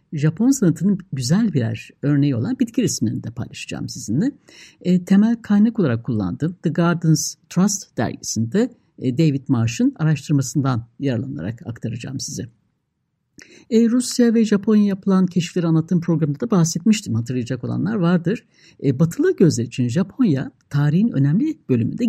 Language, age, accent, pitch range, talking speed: Turkish, 60-79, native, 135-195 Hz, 130 wpm